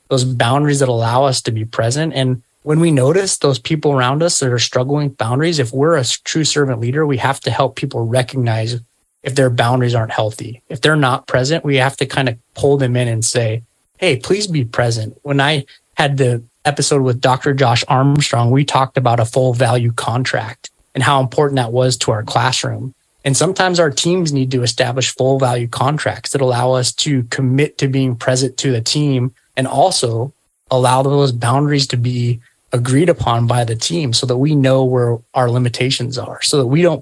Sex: male